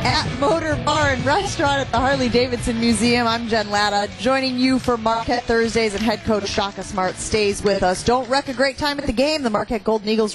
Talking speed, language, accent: 215 wpm, English, American